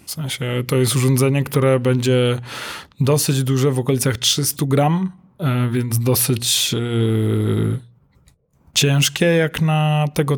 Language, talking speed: Polish, 110 wpm